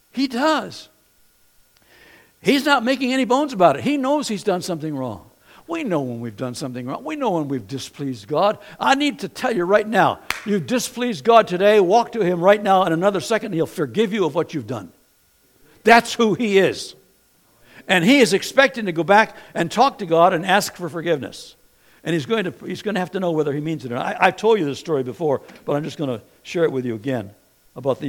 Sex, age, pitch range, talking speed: male, 60-79, 130-205 Hz, 225 wpm